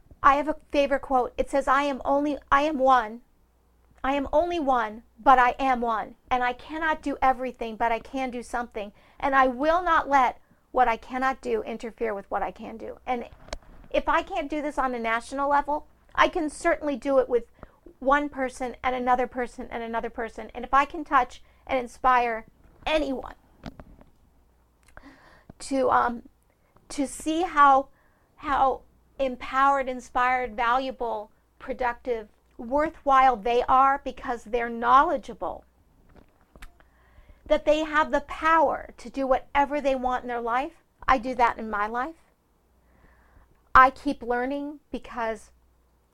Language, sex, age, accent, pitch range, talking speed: English, female, 50-69, American, 240-280 Hz, 150 wpm